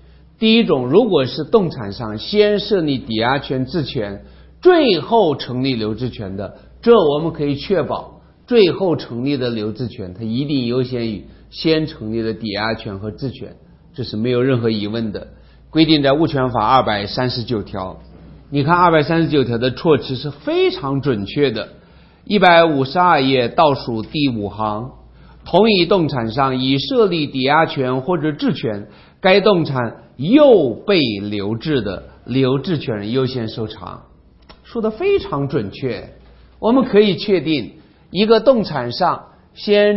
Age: 50-69